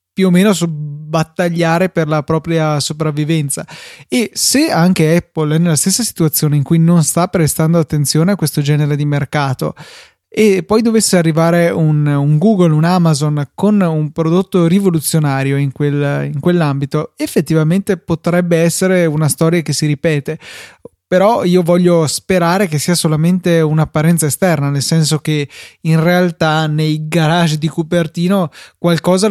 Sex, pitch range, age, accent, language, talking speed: male, 150-175 Hz, 20-39, native, Italian, 145 wpm